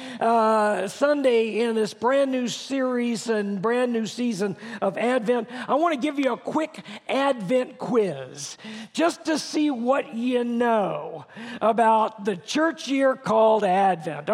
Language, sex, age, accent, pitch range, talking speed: English, male, 50-69, American, 220-290 Hz, 140 wpm